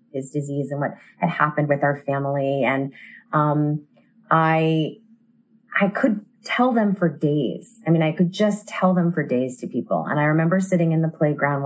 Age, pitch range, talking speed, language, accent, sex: 30-49, 175-230 Hz, 185 wpm, English, American, female